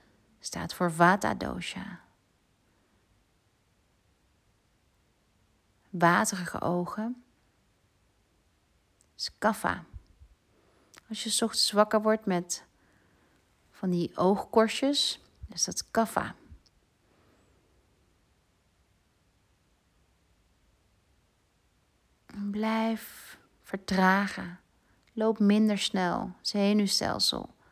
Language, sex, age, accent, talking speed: Dutch, female, 40-59, Dutch, 60 wpm